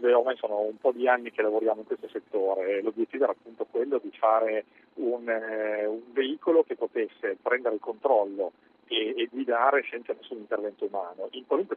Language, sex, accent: Italian, male, native